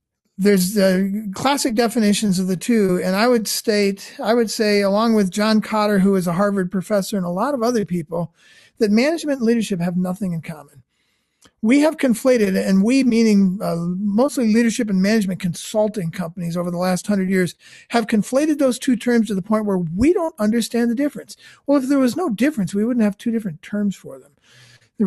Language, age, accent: English, 50-69, American